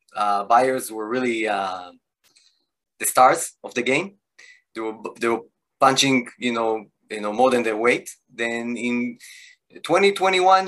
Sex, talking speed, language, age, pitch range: male, 135 wpm, English, 20-39, 115-150 Hz